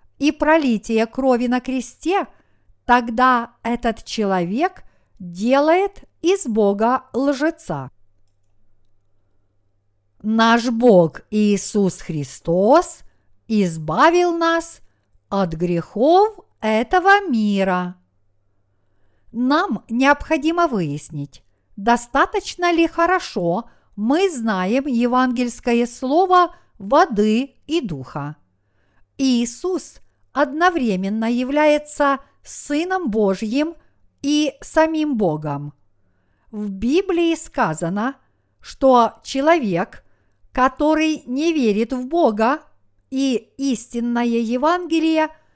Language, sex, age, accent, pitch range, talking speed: Russian, female, 50-69, native, 190-300 Hz, 75 wpm